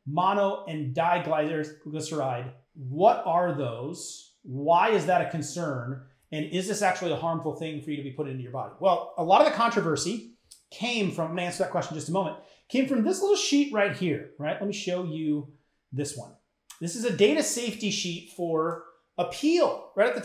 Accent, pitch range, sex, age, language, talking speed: American, 155-210 Hz, male, 30-49, English, 200 wpm